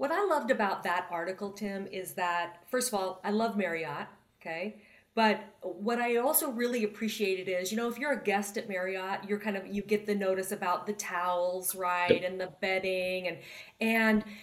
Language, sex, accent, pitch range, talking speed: English, female, American, 180-215 Hz, 195 wpm